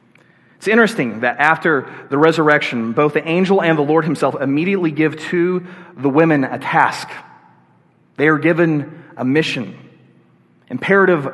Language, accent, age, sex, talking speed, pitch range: English, American, 30-49, male, 140 wpm, 140-180 Hz